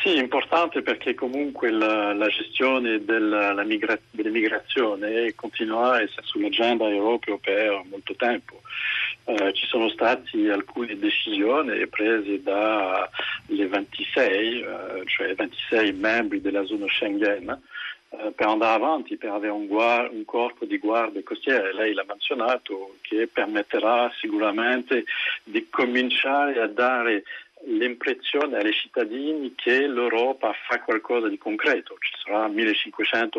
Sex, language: male, Italian